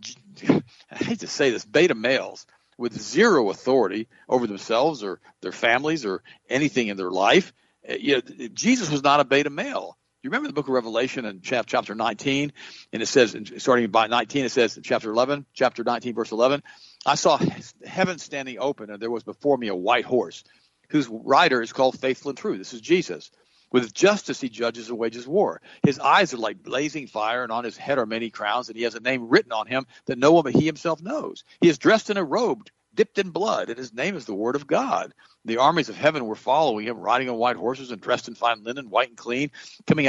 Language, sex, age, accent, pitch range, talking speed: English, male, 50-69, American, 120-150 Hz, 215 wpm